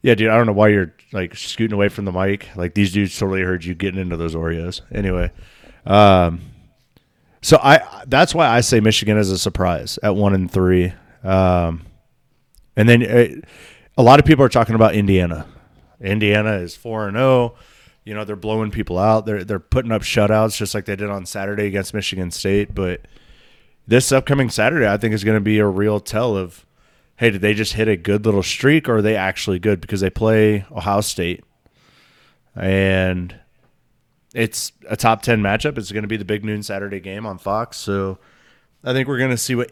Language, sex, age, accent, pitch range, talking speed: English, male, 30-49, American, 95-115 Hz, 200 wpm